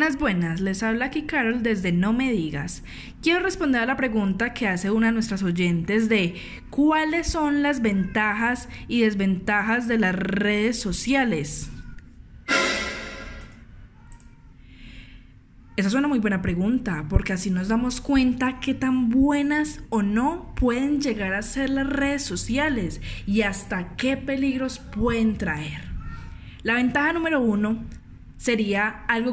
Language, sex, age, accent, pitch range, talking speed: Spanish, female, 10-29, Colombian, 185-250 Hz, 135 wpm